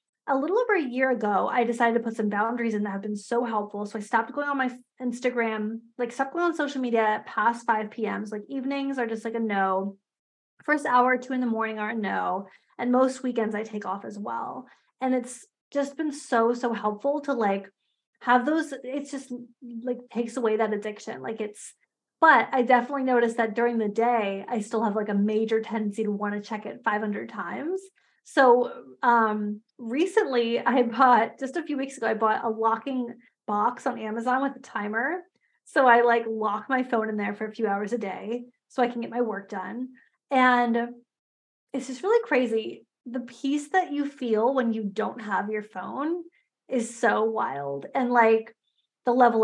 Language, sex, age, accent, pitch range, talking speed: English, female, 20-39, American, 220-265 Hz, 200 wpm